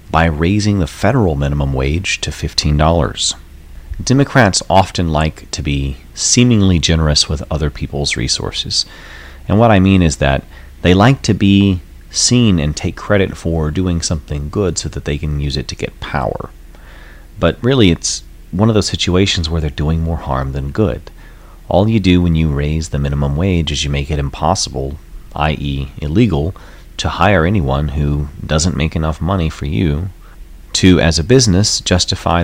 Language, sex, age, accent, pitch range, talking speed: English, male, 30-49, American, 75-95 Hz, 170 wpm